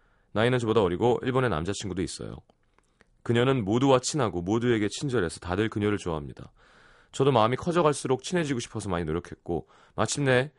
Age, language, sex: 30-49, Korean, male